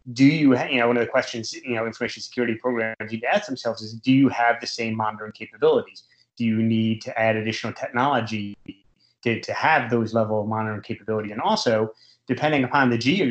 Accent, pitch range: American, 110-125 Hz